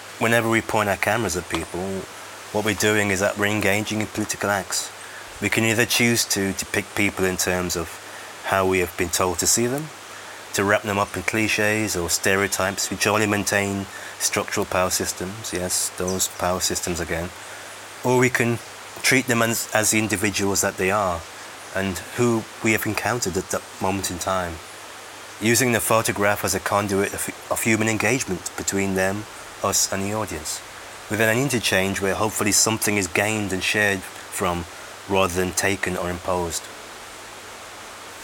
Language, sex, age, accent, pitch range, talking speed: English, male, 30-49, British, 90-110 Hz, 170 wpm